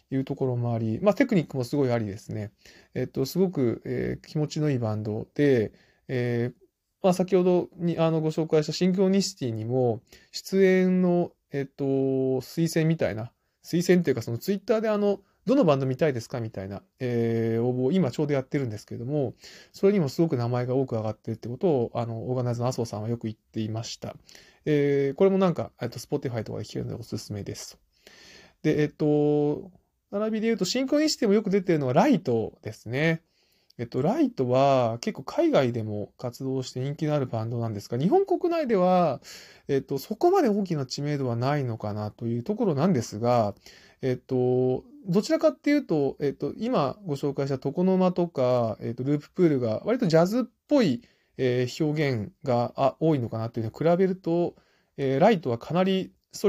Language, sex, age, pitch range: Japanese, male, 20-39, 120-180 Hz